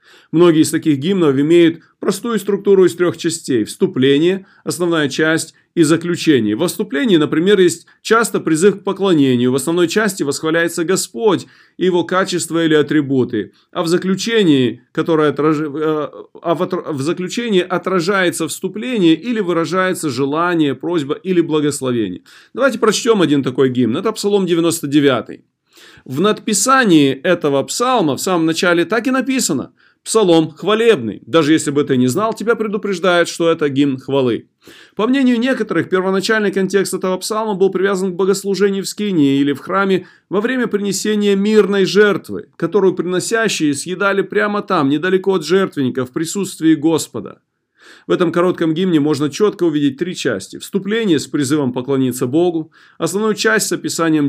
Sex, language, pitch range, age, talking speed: male, Russian, 155-200 Hz, 30-49, 140 wpm